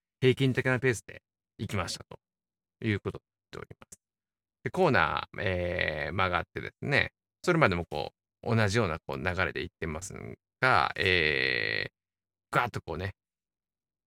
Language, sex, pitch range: Japanese, male, 90-115 Hz